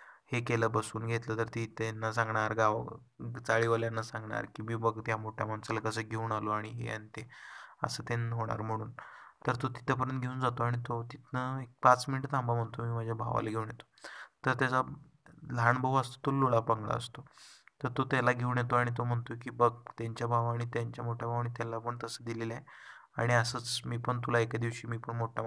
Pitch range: 115-125 Hz